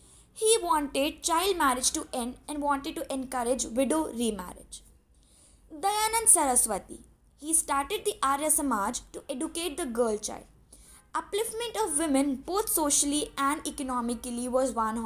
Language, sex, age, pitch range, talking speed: English, female, 20-39, 245-340 Hz, 130 wpm